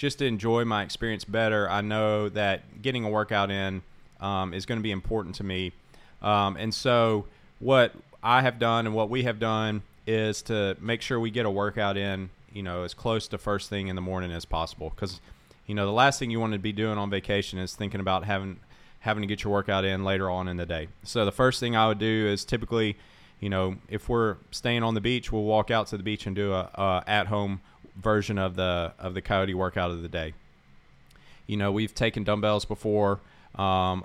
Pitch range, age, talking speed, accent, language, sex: 95-110 Hz, 30-49, 225 wpm, American, English, male